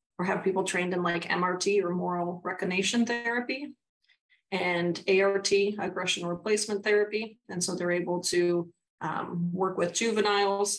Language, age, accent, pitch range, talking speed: English, 30-49, American, 175-195 Hz, 140 wpm